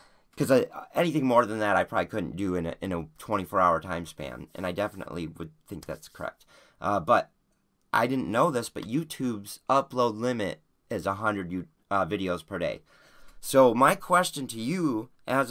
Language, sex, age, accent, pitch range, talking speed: English, male, 30-49, American, 105-140 Hz, 175 wpm